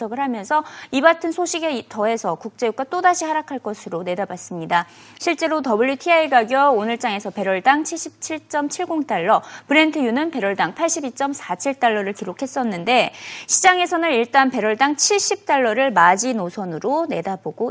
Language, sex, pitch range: Korean, female, 225-315 Hz